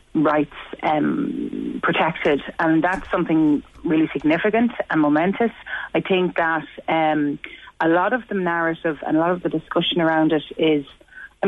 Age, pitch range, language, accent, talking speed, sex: 30-49, 150-195 Hz, English, Irish, 150 wpm, female